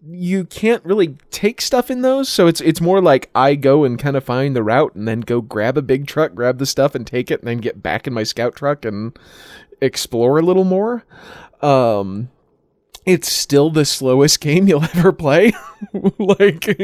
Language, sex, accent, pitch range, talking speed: English, male, American, 125-175 Hz, 200 wpm